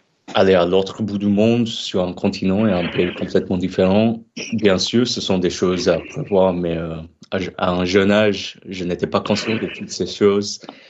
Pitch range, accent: 90-105 Hz, French